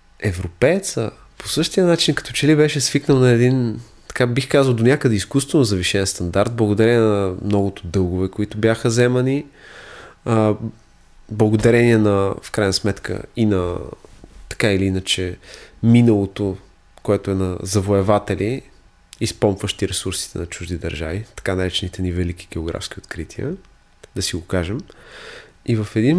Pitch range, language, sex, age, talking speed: 100-120 Hz, Bulgarian, male, 20-39, 135 wpm